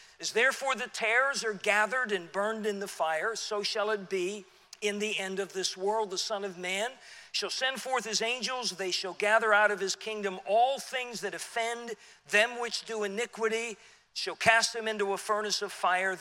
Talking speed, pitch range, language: 195 wpm, 190-225 Hz, English